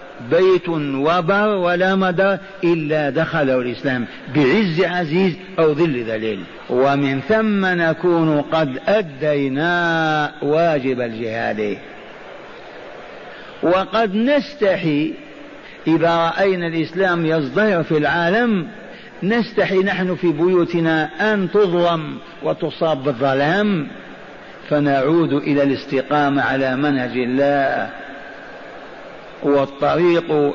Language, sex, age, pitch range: Arabic, male, 50-69, 150-190 Hz